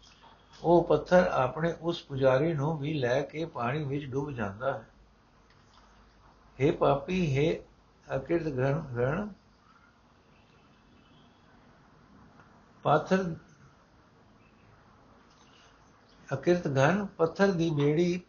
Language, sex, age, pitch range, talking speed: Punjabi, male, 60-79, 140-170 Hz, 45 wpm